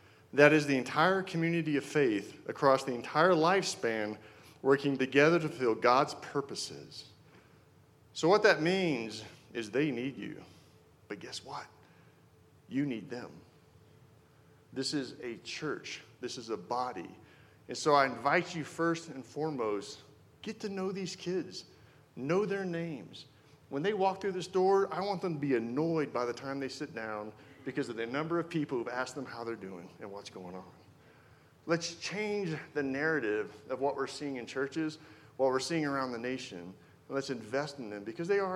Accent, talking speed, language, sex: American, 175 wpm, English, male